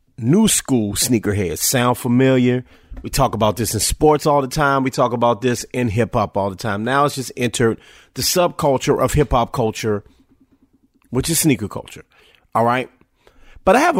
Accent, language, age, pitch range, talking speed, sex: American, English, 30-49, 105-135 Hz, 190 wpm, male